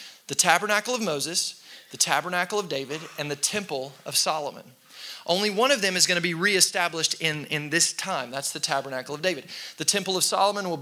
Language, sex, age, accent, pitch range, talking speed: English, male, 30-49, American, 150-195 Hz, 200 wpm